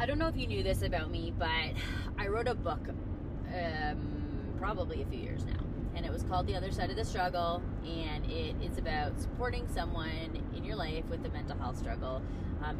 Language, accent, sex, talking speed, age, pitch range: English, American, female, 210 wpm, 20-39, 80-100 Hz